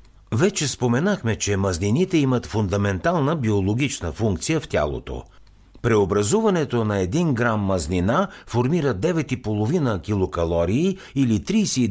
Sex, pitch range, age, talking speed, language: male, 90-135 Hz, 60-79, 95 wpm, Bulgarian